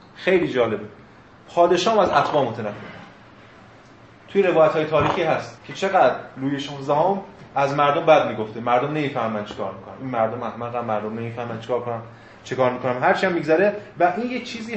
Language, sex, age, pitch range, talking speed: Persian, male, 30-49, 115-155 Hz, 160 wpm